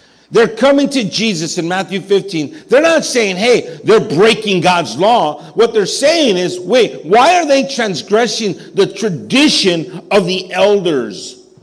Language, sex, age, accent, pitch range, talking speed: English, male, 50-69, American, 175-240 Hz, 150 wpm